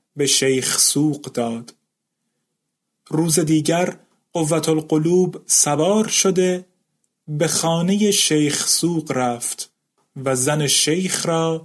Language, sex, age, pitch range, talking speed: Persian, male, 30-49, 140-185 Hz, 100 wpm